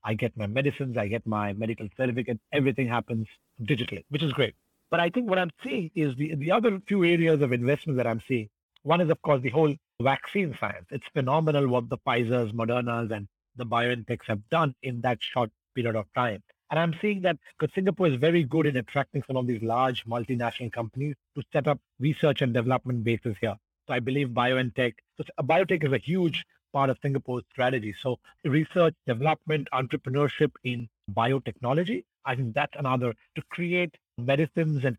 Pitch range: 120-155 Hz